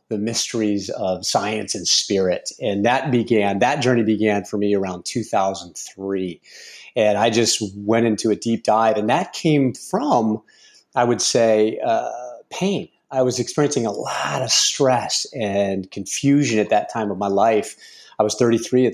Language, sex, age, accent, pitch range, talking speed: English, male, 30-49, American, 105-120 Hz, 165 wpm